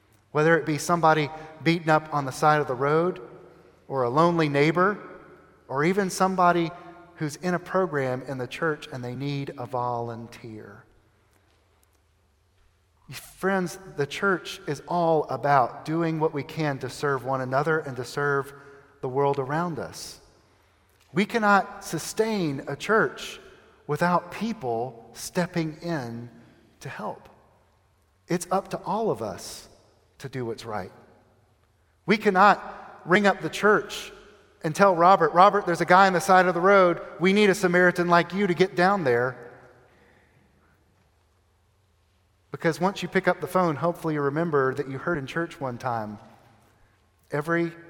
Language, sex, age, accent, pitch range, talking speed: English, male, 40-59, American, 110-175 Hz, 150 wpm